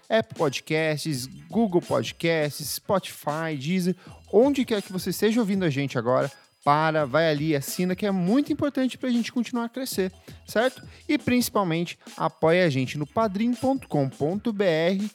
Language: Portuguese